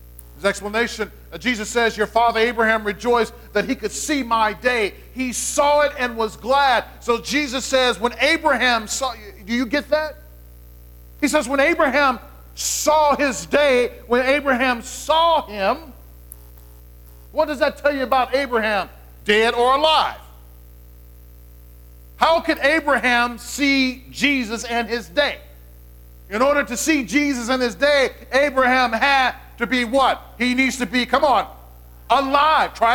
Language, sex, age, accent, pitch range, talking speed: English, male, 40-59, American, 180-265 Hz, 150 wpm